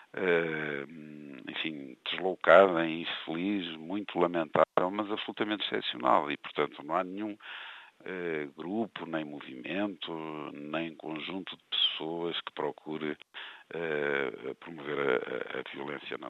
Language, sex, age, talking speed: Portuguese, male, 50-69, 115 wpm